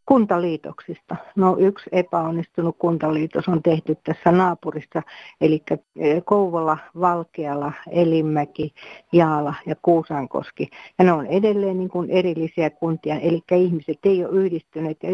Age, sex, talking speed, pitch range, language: 60-79, female, 120 wpm, 155-180 Hz, Finnish